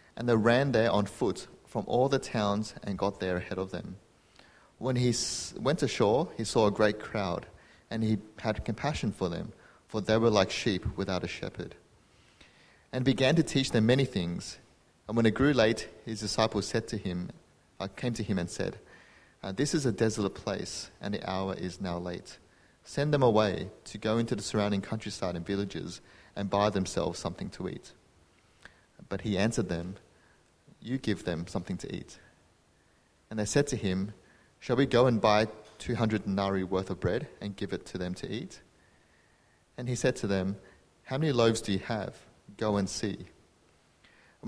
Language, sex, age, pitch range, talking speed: English, male, 30-49, 95-115 Hz, 185 wpm